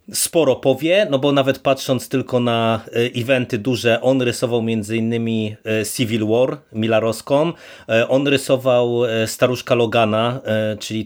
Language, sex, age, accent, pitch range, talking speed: Polish, male, 30-49, native, 115-140 Hz, 115 wpm